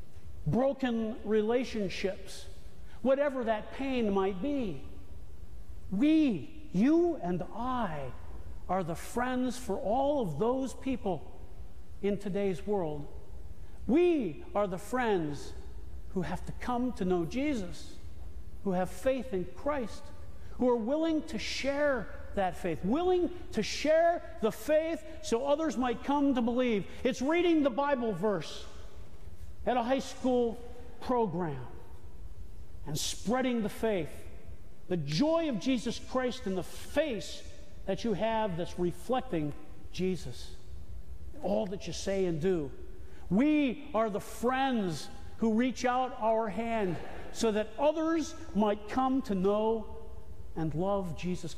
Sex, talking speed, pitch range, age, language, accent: male, 125 wpm, 150-255 Hz, 50-69, English, American